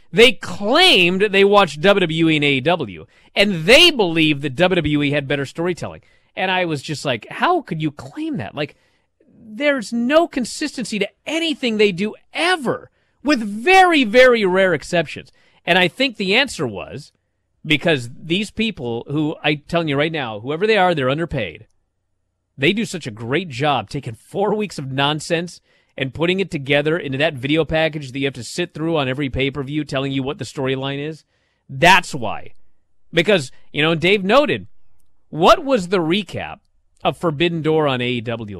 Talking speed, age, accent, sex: 170 wpm, 30-49, American, male